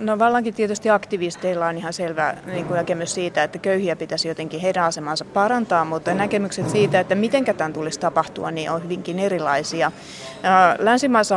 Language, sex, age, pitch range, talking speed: Finnish, female, 30-49, 175-210 Hz, 160 wpm